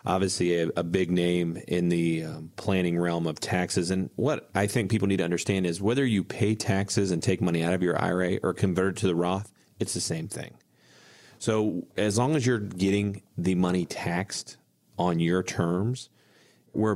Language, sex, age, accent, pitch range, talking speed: English, male, 40-59, American, 90-105 Hz, 195 wpm